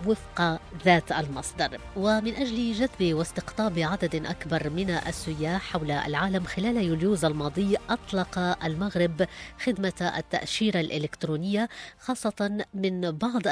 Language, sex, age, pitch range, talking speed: English, female, 20-39, 160-195 Hz, 105 wpm